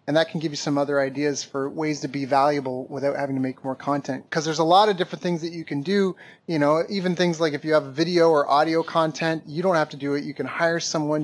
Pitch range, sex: 140-165 Hz, male